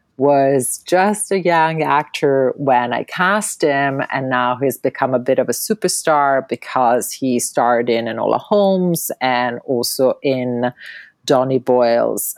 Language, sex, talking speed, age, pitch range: English, female, 140 wpm, 40-59, 130-175 Hz